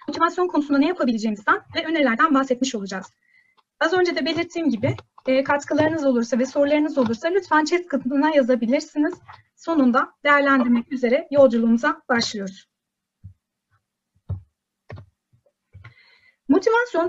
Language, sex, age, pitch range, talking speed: Turkish, female, 30-49, 250-310 Hz, 100 wpm